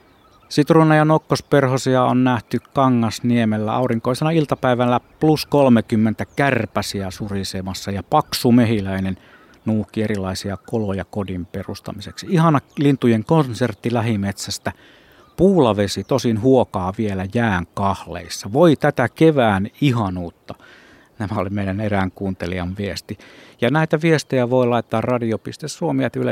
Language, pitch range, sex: Finnish, 100-125 Hz, male